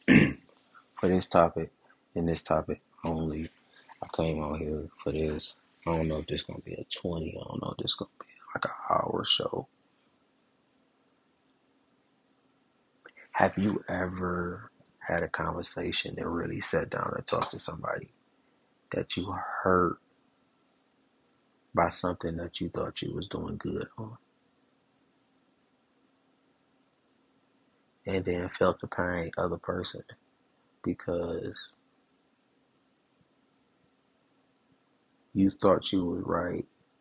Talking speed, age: 120 wpm, 20-39